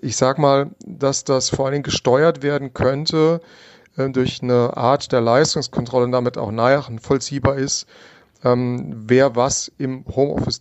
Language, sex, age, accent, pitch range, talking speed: German, male, 40-59, German, 120-140 Hz, 160 wpm